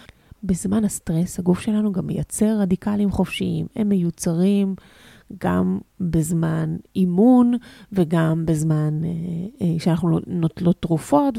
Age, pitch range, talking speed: 30-49, 175-215 Hz, 105 wpm